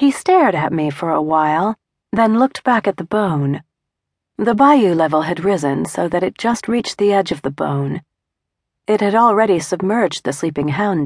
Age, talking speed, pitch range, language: 40-59, 190 wpm, 155-225 Hz, English